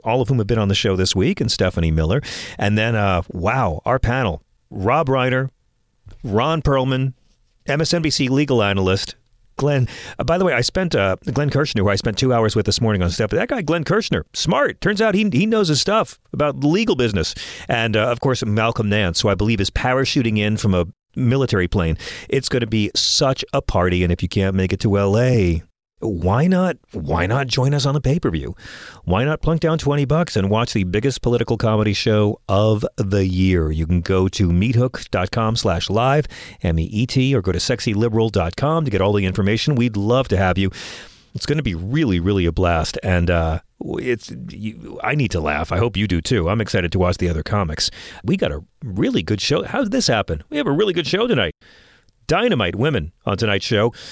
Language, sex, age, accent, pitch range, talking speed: English, male, 40-59, American, 95-135 Hz, 210 wpm